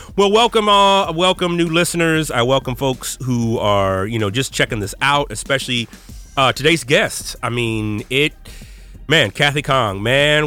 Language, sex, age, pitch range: English, male, 30-49, 115-150 Hz